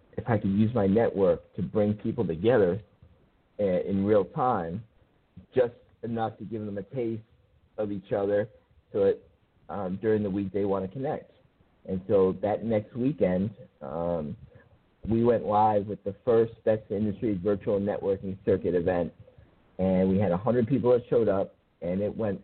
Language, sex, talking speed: English, male, 165 wpm